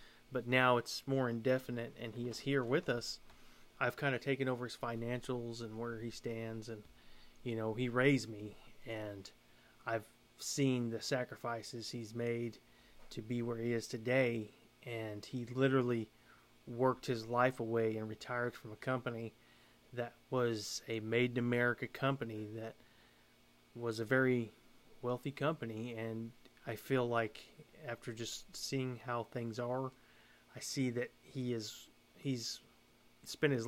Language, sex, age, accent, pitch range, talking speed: English, male, 30-49, American, 115-130 Hz, 150 wpm